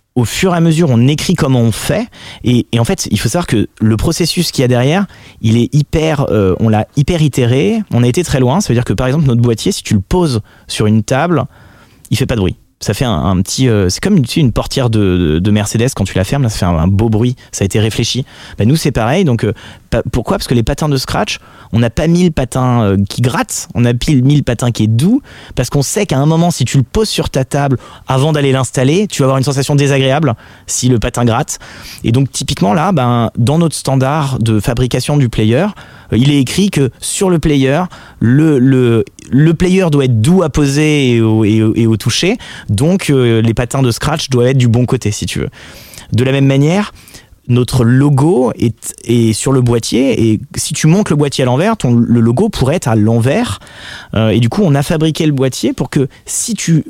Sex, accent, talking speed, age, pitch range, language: male, French, 245 wpm, 30-49, 115-150 Hz, French